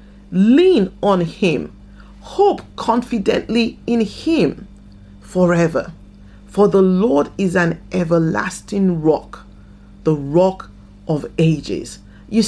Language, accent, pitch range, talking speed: English, Nigerian, 175-235 Hz, 95 wpm